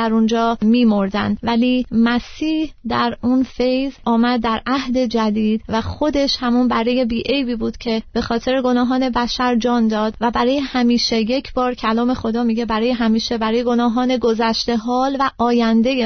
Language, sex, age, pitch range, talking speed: Persian, female, 30-49, 225-255 Hz, 160 wpm